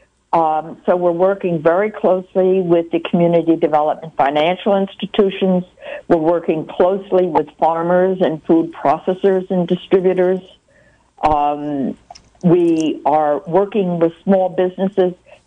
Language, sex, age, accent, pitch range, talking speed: English, female, 60-79, American, 165-200 Hz, 115 wpm